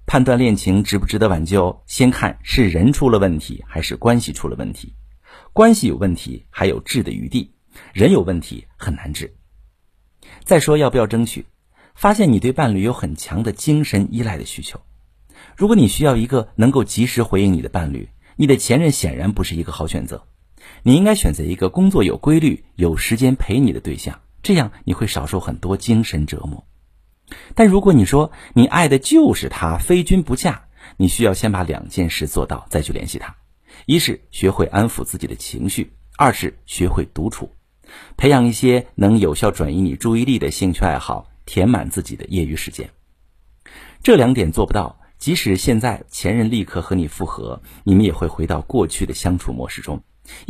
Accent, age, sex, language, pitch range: native, 50-69, male, Chinese, 85-125 Hz